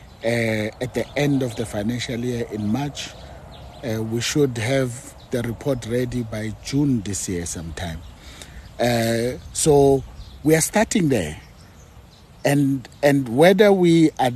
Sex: male